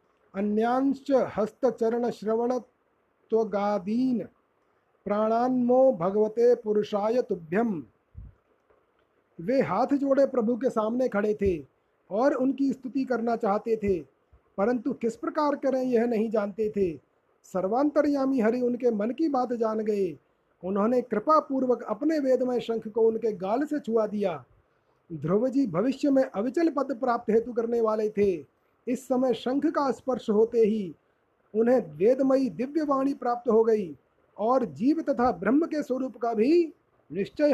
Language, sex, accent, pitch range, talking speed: Hindi, male, native, 215-265 Hz, 125 wpm